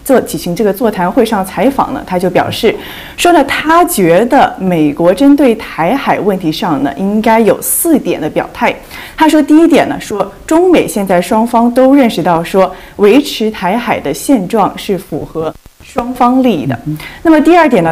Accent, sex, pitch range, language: native, female, 180-265 Hz, Chinese